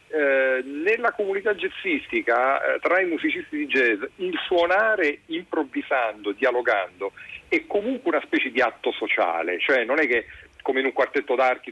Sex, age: male, 40-59